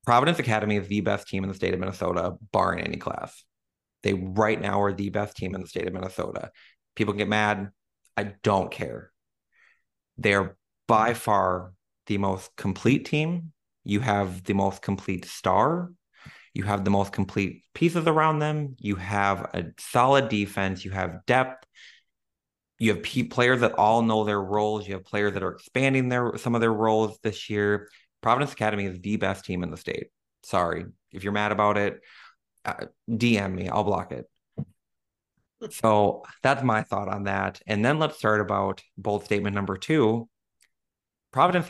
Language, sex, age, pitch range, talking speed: English, male, 30-49, 100-120 Hz, 175 wpm